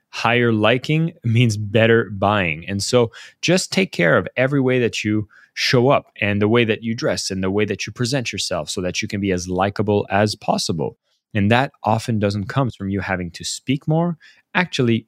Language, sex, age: English, male, 20-39